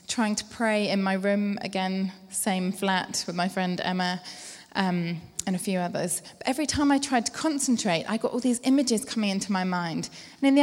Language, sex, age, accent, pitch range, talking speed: English, female, 20-39, British, 180-225 Hz, 205 wpm